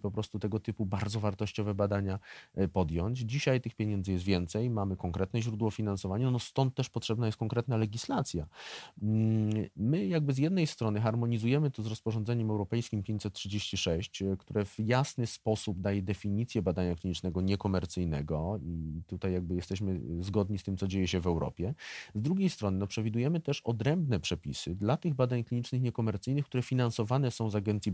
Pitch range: 95-120 Hz